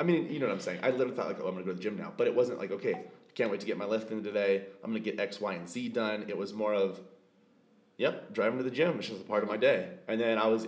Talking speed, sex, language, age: 350 wpm, male, English, 30-49